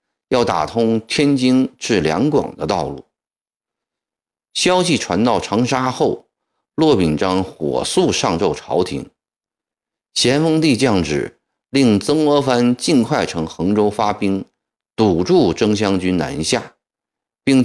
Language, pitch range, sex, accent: Chinese, 85-145 Hz, male, native